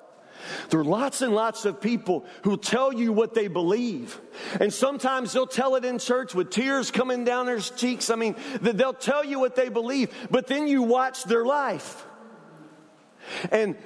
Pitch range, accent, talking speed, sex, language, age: 215-265 Hz, American, 185 wpm, male, English, 40-59